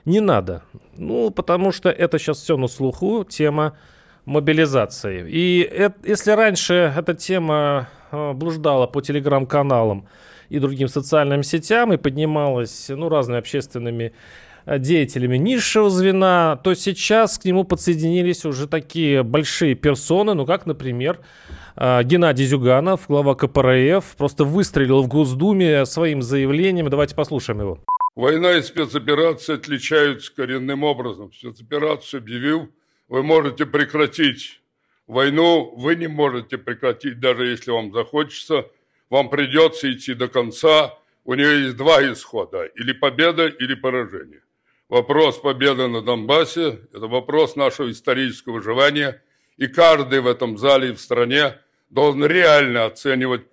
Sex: male